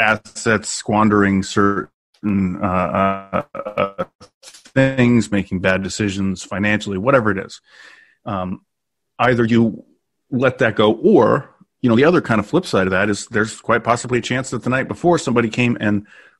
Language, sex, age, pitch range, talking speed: English, male, 30-49, 100-120 Hz, 155 wpm